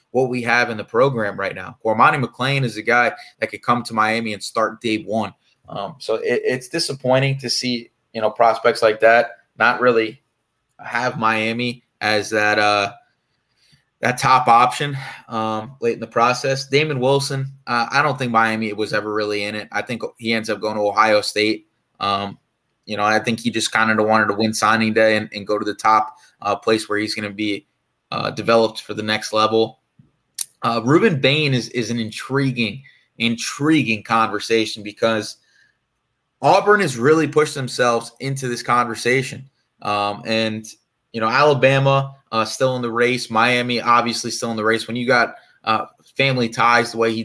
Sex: male